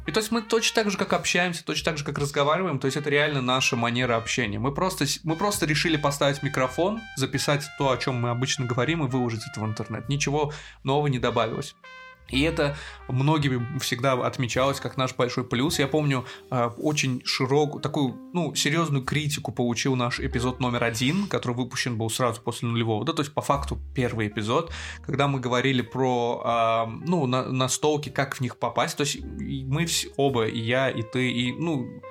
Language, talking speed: Russian, 195 wpm